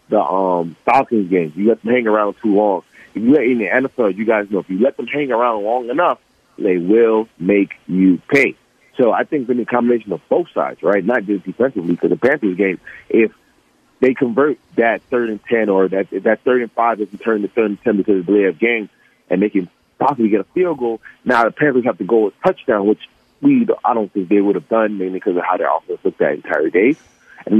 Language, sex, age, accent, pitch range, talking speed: English, male, 30-49, American, 100-130 Hz, 245 wpm